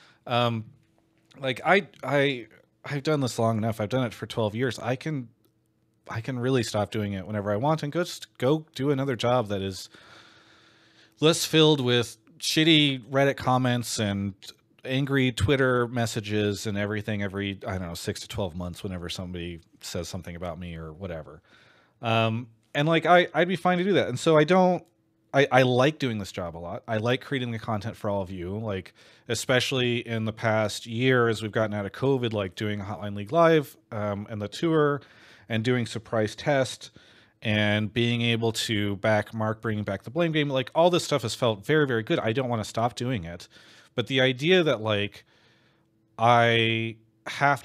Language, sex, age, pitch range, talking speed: English, male, 30-49, 105-130 Hz, 195 wpm